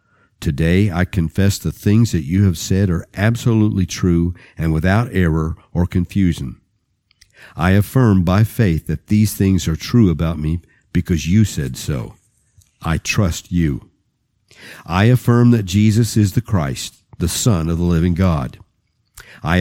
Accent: American